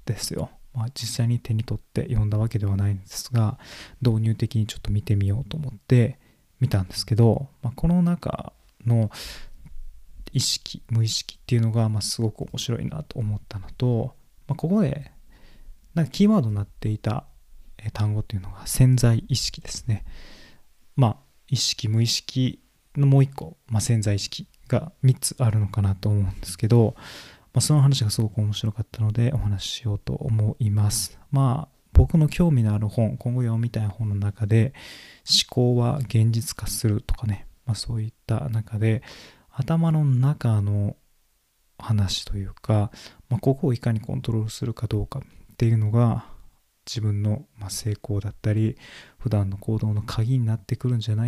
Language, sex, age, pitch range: Japanese, male, 20-39, 105-130 Hz